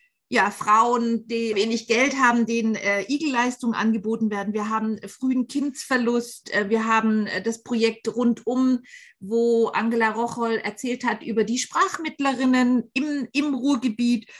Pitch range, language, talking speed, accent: 210-240 Hz, German, 140 wpm, German